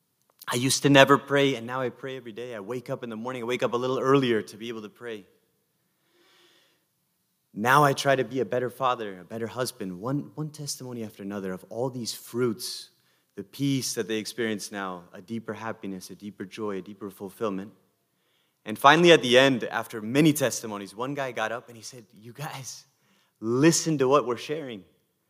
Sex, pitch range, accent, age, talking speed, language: male, 110-140 Hz, American, 30-49, 200 wpm, English